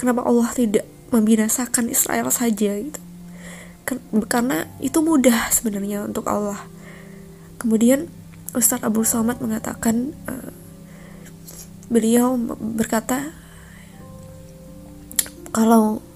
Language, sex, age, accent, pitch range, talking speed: Indonesian, female, 20-39, native, 195-235 Hz, 80 wpm